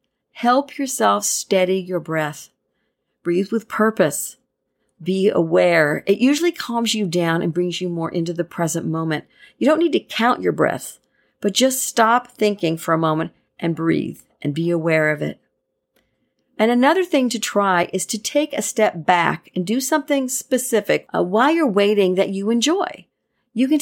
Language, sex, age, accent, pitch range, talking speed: English, female, 50-69, American, 175-250 Hz, 170 wpm